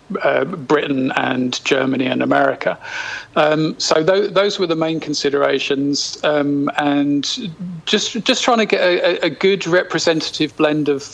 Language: English